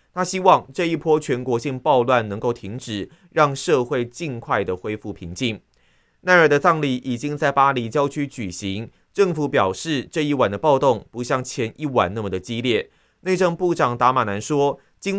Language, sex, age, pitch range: Chinese, male, 30-49, 115-155 Hz